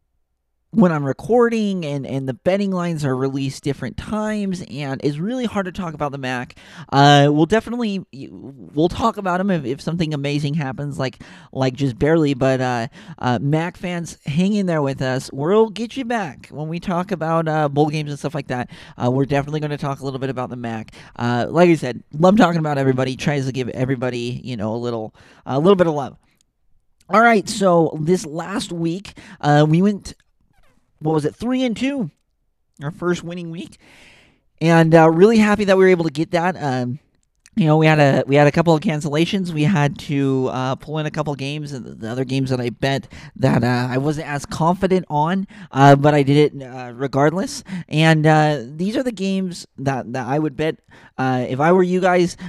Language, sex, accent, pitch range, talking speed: English, male, American, 130-180 Hz, 215 wpm